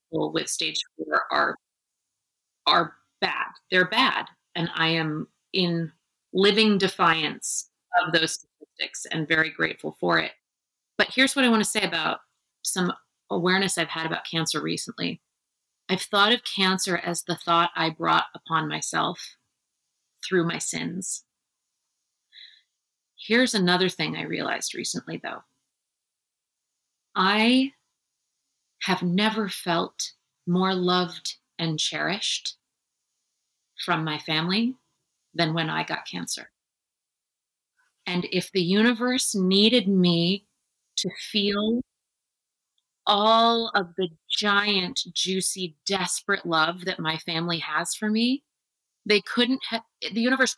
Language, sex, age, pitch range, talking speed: English, female, 30-49, 170-215 Hz, 120 wpm